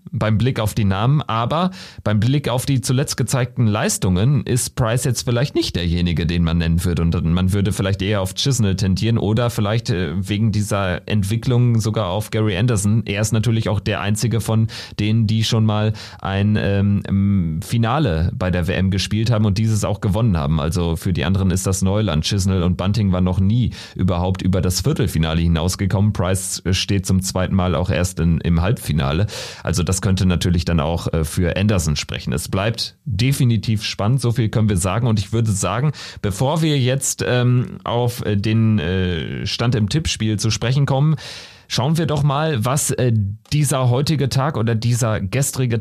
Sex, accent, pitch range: male, German, 95-120 Hz